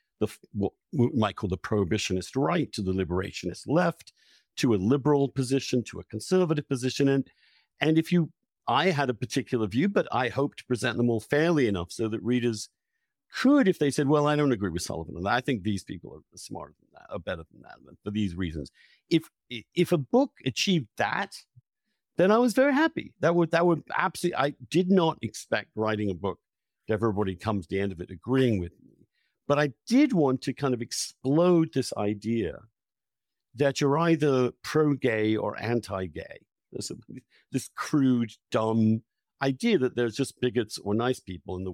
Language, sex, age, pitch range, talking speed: English, male, 50-69, 105-150 Hz, 185 wpm